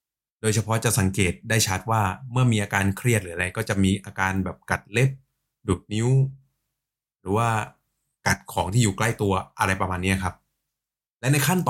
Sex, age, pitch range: male, 20-39, 100-135 Hz